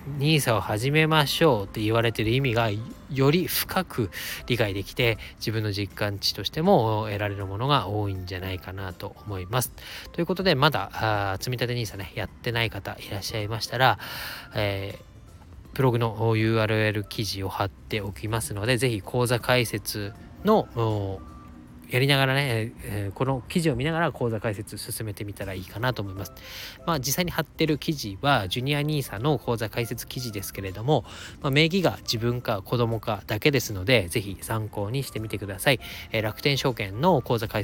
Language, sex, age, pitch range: Japanese, male, 20-39, 100-135 Hz